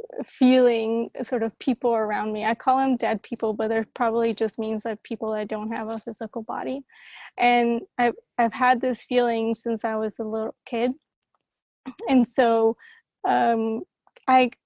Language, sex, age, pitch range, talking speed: English, female, 20-39, 225-255 Hz, 165 wpm